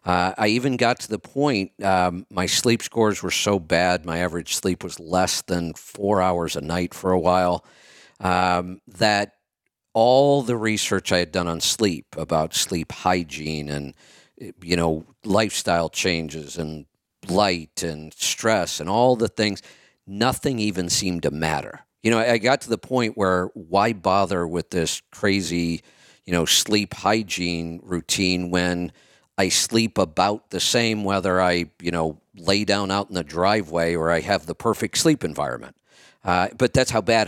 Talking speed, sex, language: 165 wpm, male, English